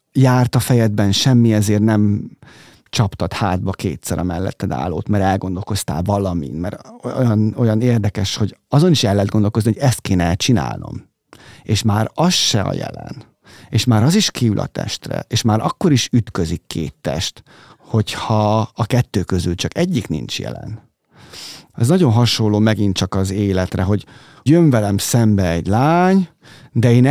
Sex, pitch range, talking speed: male, 100-130 Hz, 155 wpm